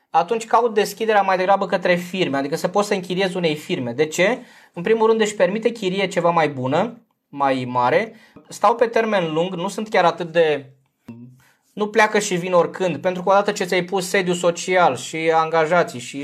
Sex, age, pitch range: male, 20-39, 170-215 Hz